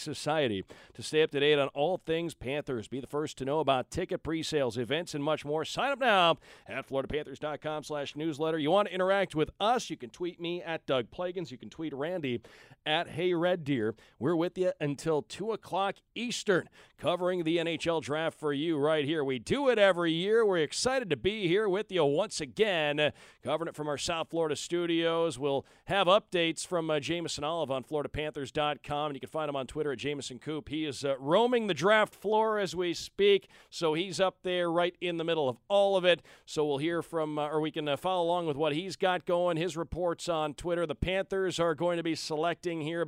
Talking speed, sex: 210 wpm, male